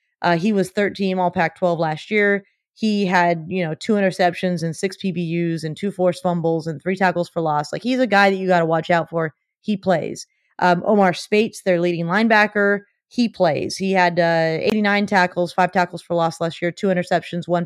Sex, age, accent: female, 30-49, American